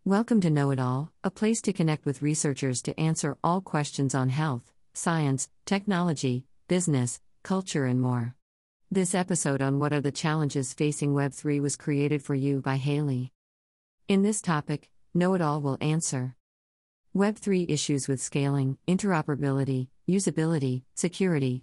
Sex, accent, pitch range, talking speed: female, American, 130-160 Hz, 145 wpm